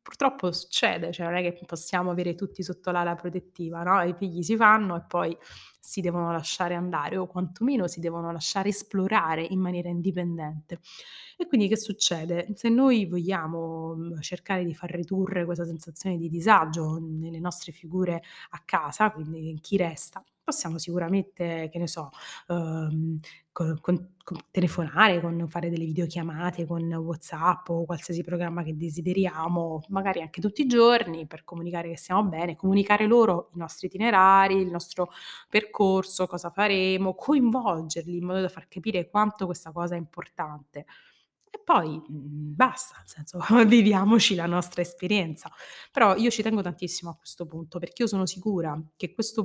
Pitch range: 170-195 Hz